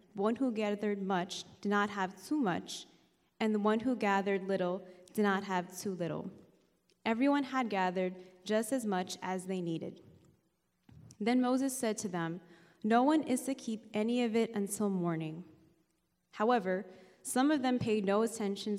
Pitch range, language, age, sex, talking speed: 185-230 Hz, English, 20-39, female, 165 wpm